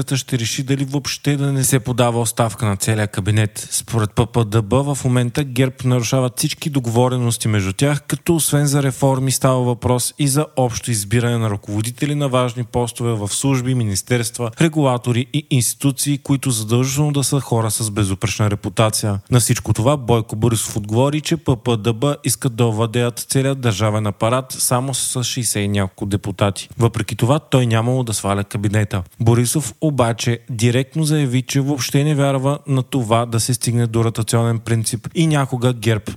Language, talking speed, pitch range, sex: Bulgarian, 160 wpm, 115-140 Hz, male